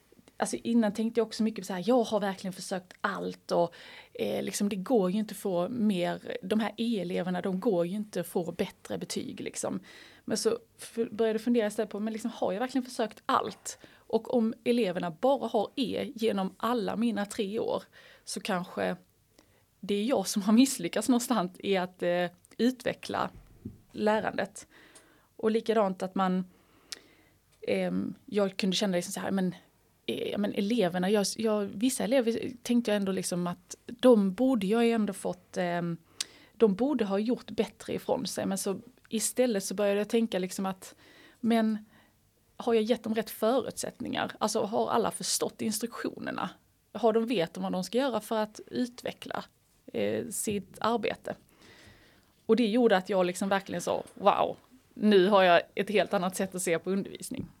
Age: 20-39